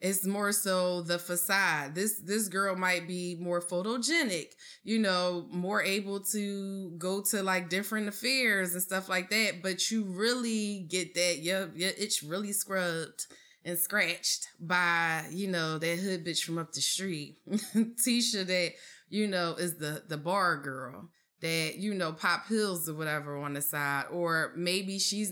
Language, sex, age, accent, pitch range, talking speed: English, female, 20-39, American, 175-210 Hz, 165 wpm